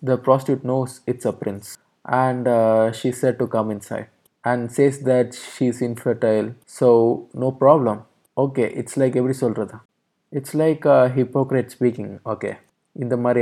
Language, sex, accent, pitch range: Tamil, male, native, 115-140 Hz